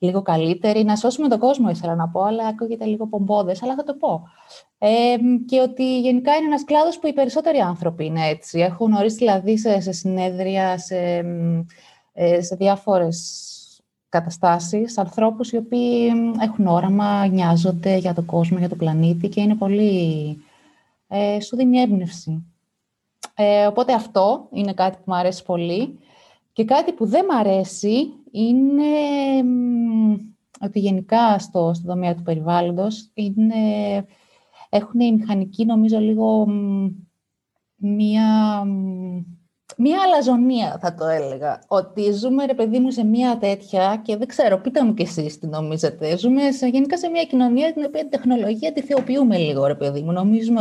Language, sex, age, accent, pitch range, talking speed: Greek, female, 20-39, native, 175-245 Hz, 150 wpm